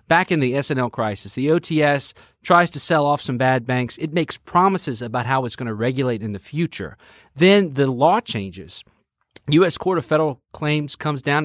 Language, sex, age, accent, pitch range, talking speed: English, male, 40-59, American, 120-160 Hz, 195 wpm